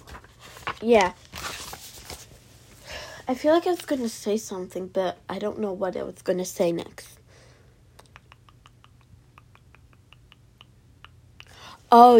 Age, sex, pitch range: 10-29, female, 170-230 Hz